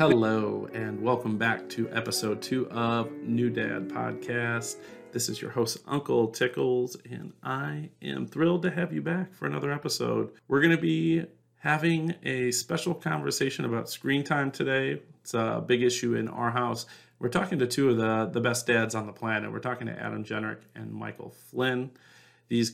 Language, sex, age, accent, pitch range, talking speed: English, male, 40-59, American, 110-135 Hz, 180 wpm